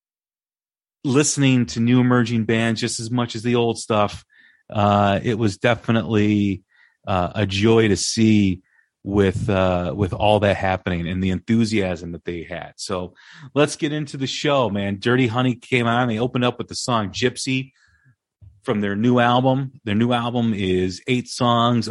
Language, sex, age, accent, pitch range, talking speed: English, male, 40-59, American, 95-125 Hz, 165 wpm